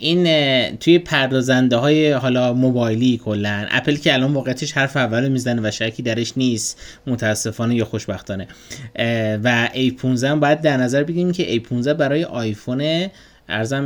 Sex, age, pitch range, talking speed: male, 20-39, 115-150 Hz, 145 wpm